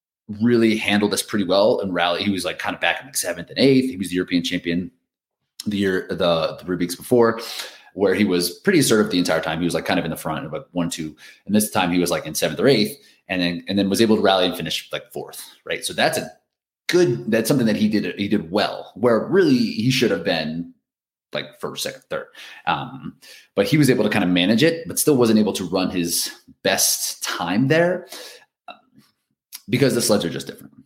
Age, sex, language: 30-49, male, English